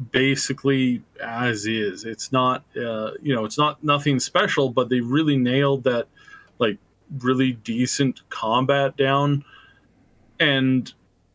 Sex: male